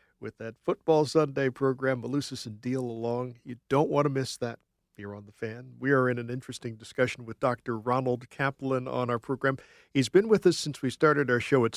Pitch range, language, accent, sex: 110-140 Hz, English, American, male